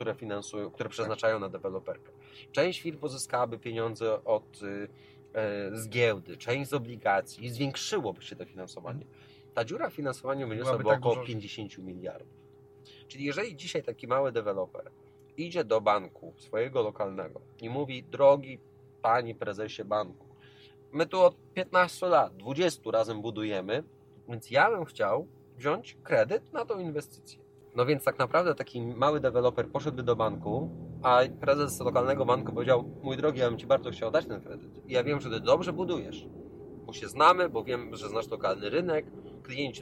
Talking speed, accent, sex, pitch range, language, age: 160 wpm, native, male, 120-150 Hz, Polish, 30-49